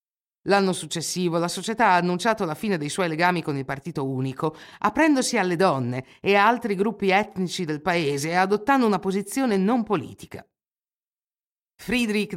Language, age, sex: Italian, 50-69, female